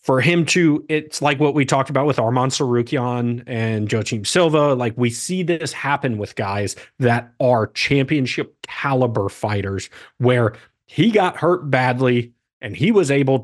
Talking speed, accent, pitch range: 160 wpm, American, 115-145 Hz